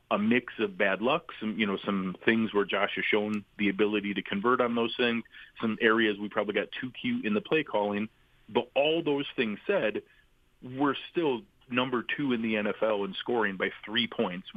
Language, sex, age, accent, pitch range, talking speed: English, male, 40-59, American, 100-120 Hz, 200 wpm